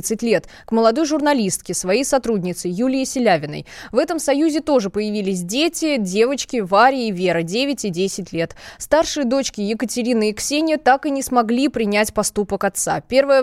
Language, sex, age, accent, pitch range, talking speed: Russian, female, 20-39, native, 210-270 Hz, 155 wpm